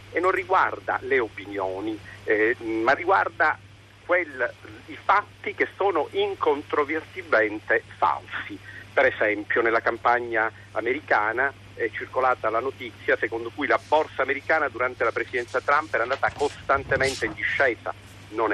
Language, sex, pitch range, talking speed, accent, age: Italian, male, 110-155 Hz, 125 wpm, native, 50-69